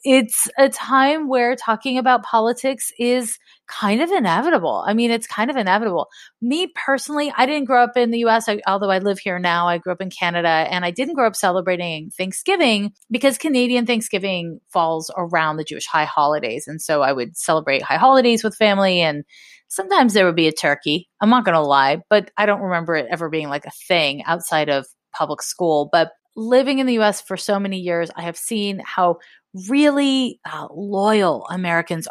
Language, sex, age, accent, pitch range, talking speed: English, female, 30-49, American, 175-245 Hz, 195 wpm